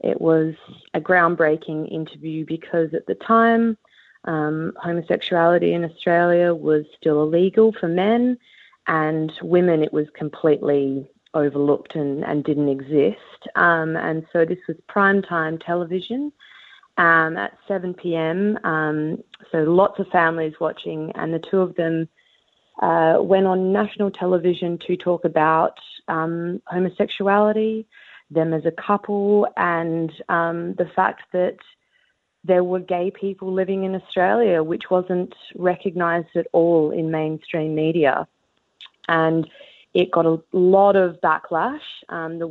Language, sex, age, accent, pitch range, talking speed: English, female, 30-49, Australian, 155-185 Hz, 130 wpm